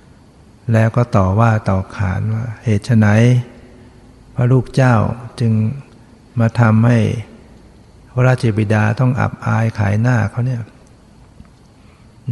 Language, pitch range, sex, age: Thai, 110-120 Hz, male, 60-79